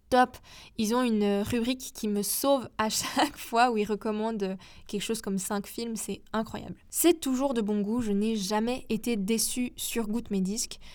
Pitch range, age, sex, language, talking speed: 205-250 Hz, 10-29, female, French, 190 wpm